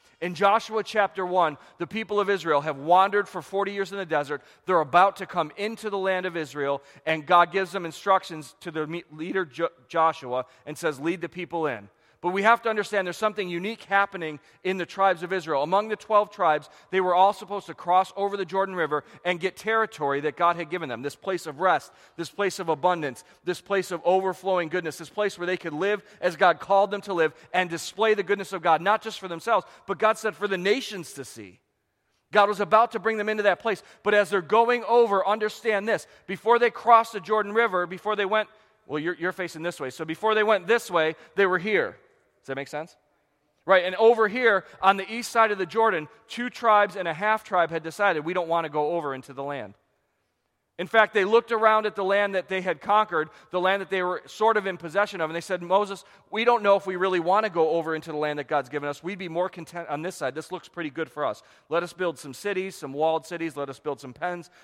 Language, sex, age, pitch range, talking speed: English, male, 40-59, 160-205 Hz, 240 wpm